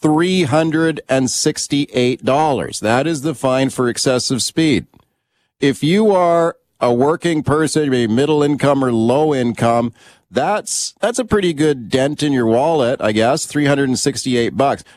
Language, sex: English, male